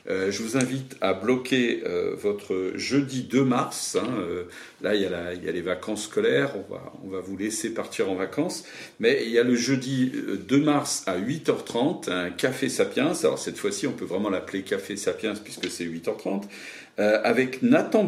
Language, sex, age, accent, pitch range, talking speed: French, male, 50-69, French, 100-140 Hz, 190 wpm